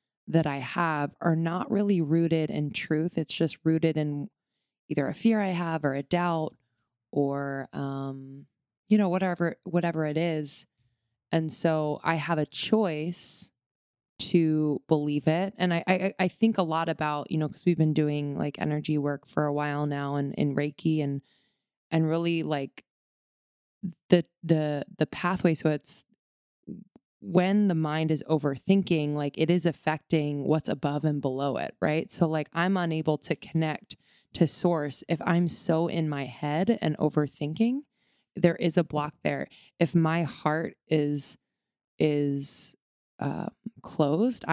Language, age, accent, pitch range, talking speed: English, 20-39, American, 145-175 Hz, 155 wpm